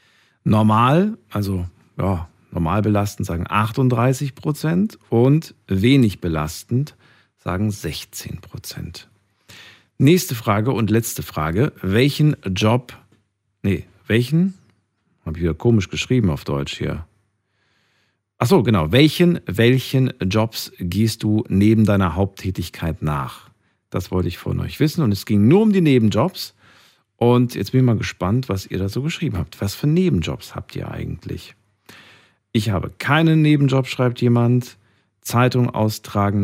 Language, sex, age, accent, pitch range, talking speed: German, male, 50-69, German, 95-125 Hz, 135 wpm